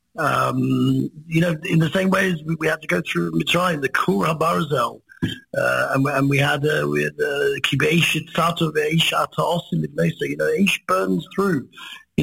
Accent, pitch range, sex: British, 135-170 Hz, male